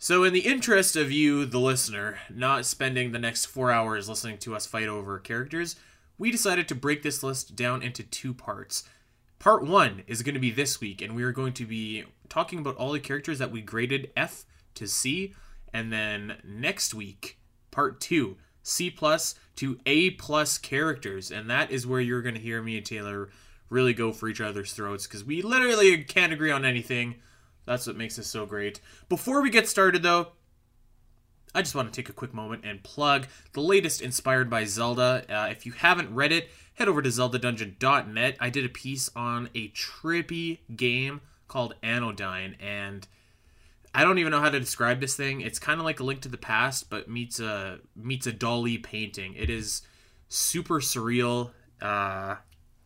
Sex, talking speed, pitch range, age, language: male, 190 wpm, 110-140 Hz, 20-39, English